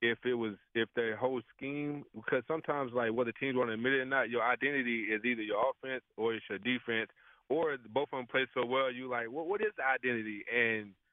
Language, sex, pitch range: English, male, 110-130 Hz